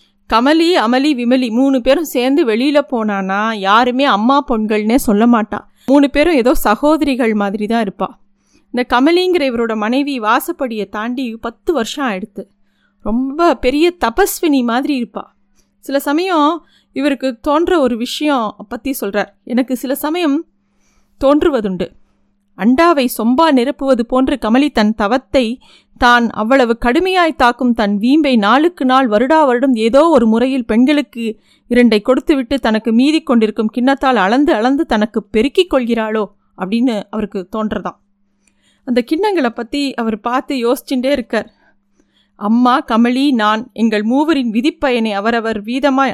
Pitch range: 220-275 Hz